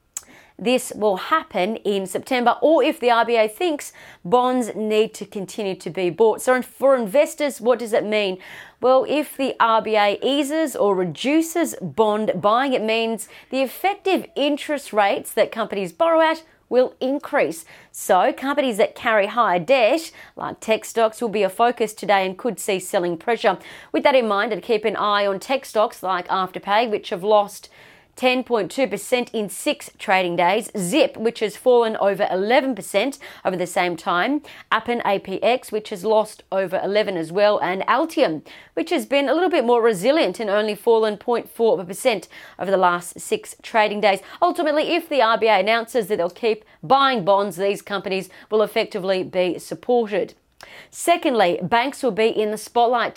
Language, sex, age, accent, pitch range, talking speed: English, female, 30-49, Australian, 200-260 Hz, 165 wpm